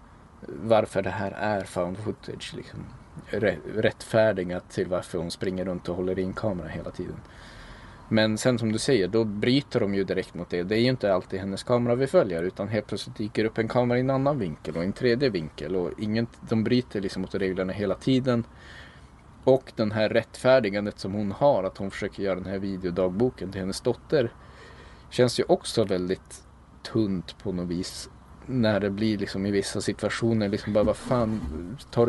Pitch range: 95-115 Hz